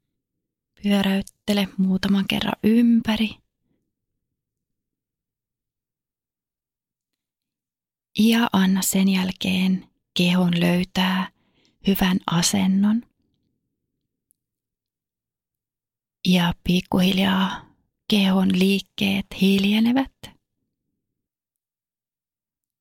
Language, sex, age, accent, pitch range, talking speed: Finnish, female, 30-49, native, 185-215 Hz, 45 wpm